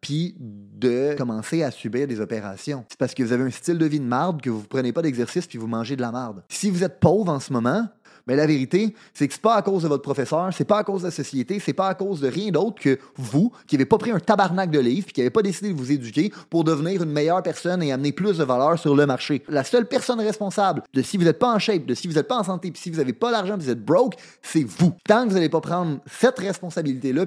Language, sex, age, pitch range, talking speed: French, male, 30-49, 130-185 Hz, 290 wpm